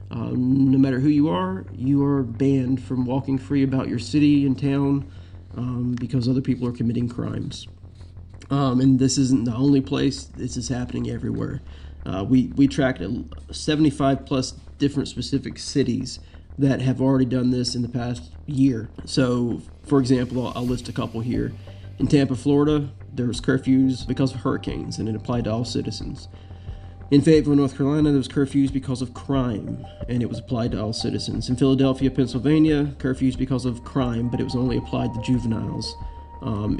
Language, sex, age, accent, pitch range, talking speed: English, male, 30-49, American, 115-135 Hz, 175 wpm